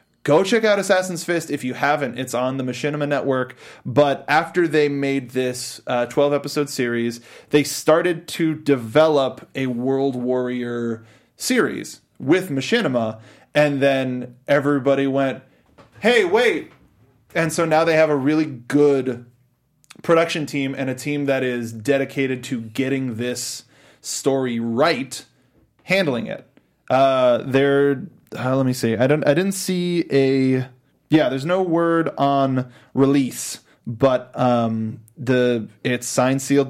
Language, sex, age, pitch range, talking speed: English, male, 20-39, 125-150 Hz, 135 wpm